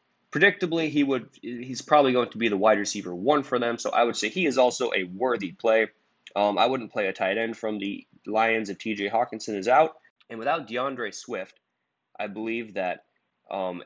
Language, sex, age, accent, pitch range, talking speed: English, male, 20-39, American, 95-125 Hz, 205 wpm